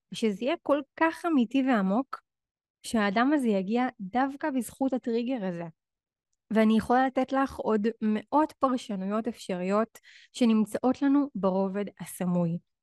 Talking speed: 115 wpm